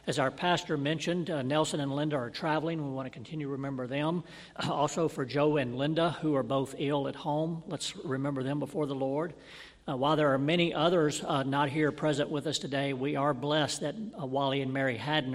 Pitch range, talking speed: 130-155 Hz, 225 wpm